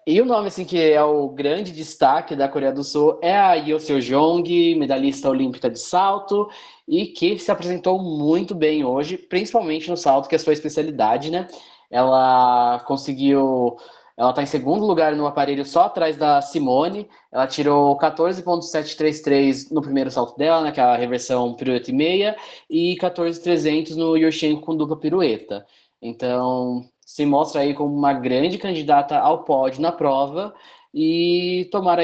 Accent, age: Brazilian, 20-39